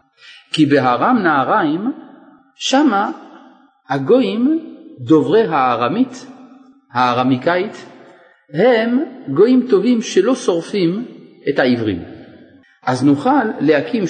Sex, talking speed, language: male, 75 wpm, Hebrew